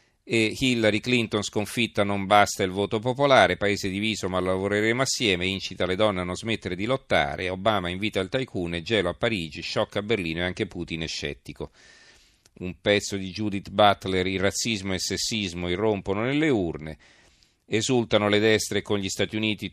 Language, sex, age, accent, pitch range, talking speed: Italian, male, 40-59, native, 95-110 Hz, 175 wpm